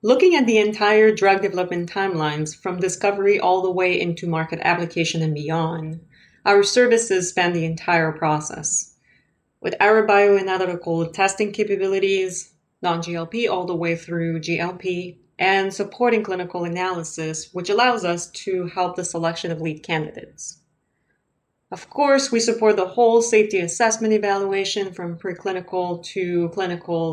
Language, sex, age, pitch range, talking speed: English, female, 30-49, 170-205 Hz, 135 wpm